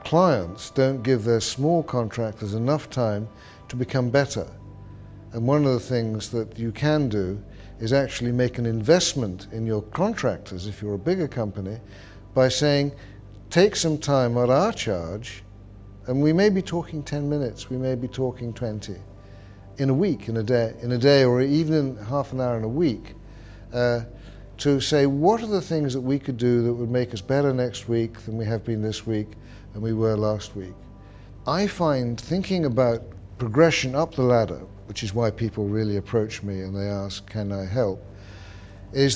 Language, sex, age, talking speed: English, male, 60-79, 185 wpm